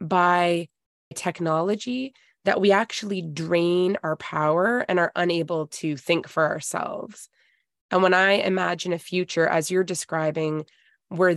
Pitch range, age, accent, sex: 160-190 Hz, 20-39, American, female